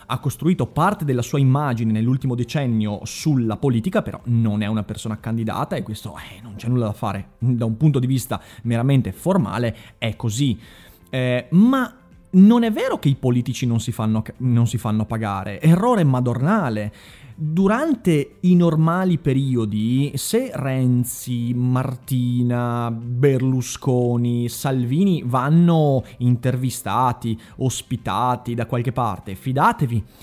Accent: native